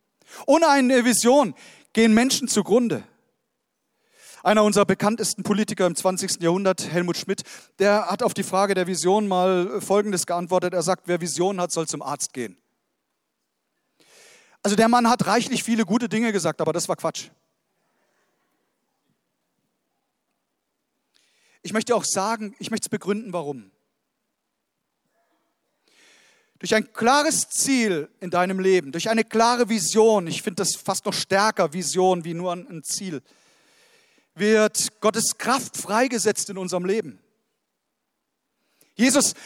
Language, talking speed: German, 130 wpm